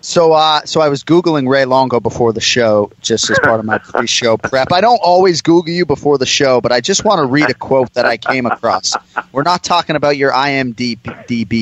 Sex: male